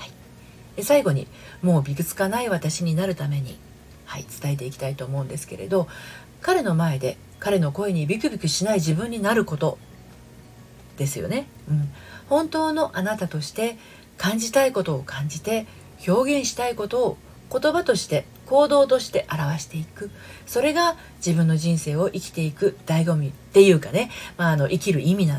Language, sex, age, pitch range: Japanese, female, 40-59, 150-210 Hz